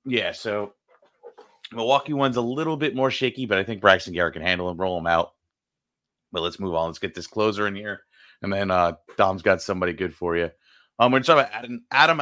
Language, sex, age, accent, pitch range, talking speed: English, male, 30-49, American, 95-125 Hz, 220 wpm